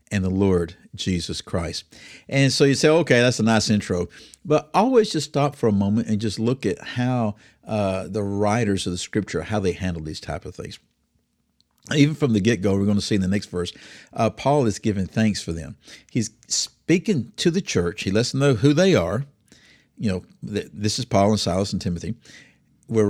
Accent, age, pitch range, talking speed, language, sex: American, 50-69, 95-140 Hz, 210 wpm, English, male